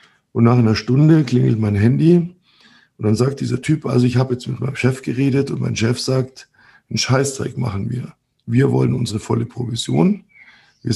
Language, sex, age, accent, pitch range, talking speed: German, male, 60-79, German, 115-135 Hz, 185 wpm